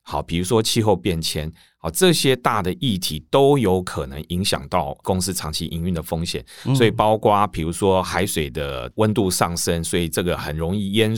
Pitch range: 85-120 Hz